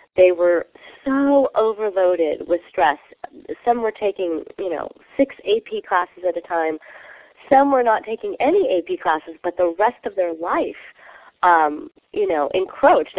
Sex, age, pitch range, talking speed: female, 30-49, 170-225 Hz, 155 wpm